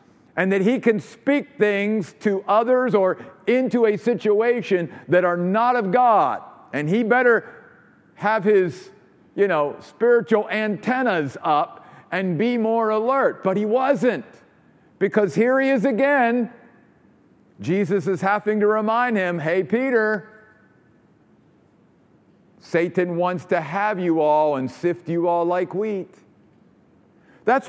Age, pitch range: 50-69, 185-240 Hz